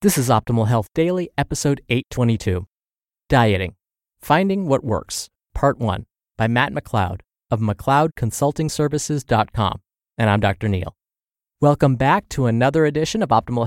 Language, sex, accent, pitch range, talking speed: English, male, American, 110-145 Hz, 125 wpm